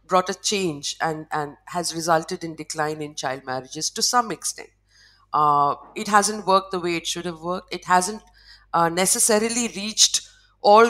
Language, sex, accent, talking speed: English, female, Indian, 170 wpm